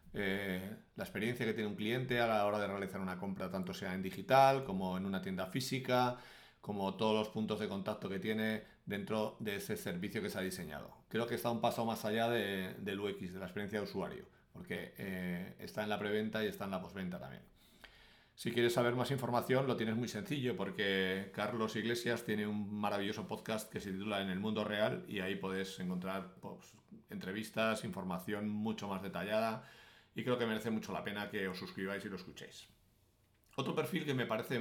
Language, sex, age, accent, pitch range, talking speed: English, male, 40-59, Spanish, 95-115 Hz, 200 wpm